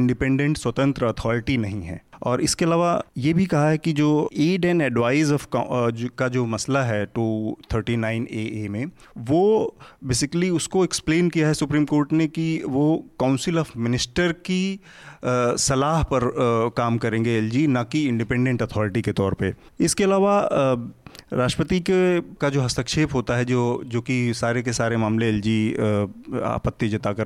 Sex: male